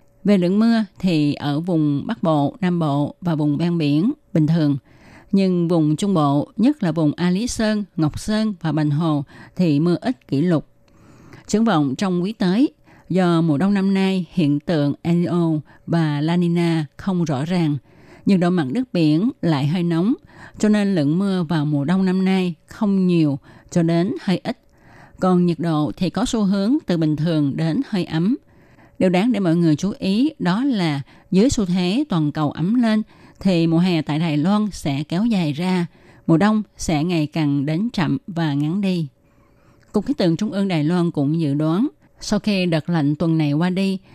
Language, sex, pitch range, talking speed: Vietnamese, female, 155-195 Hz, 200 wpm